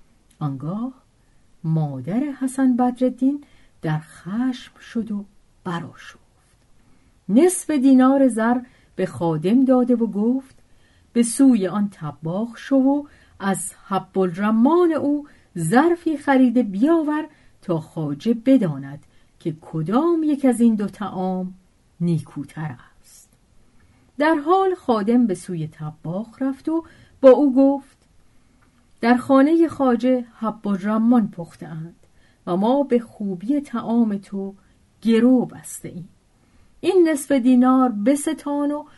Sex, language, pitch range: female, Persian, 180-265 Hz